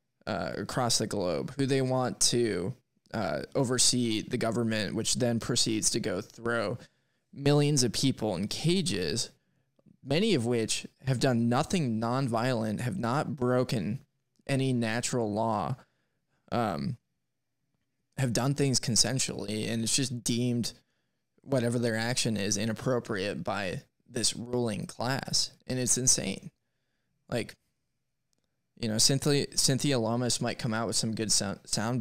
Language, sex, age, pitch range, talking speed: English, male, 20-39, 110-135 Hz, 130 wpm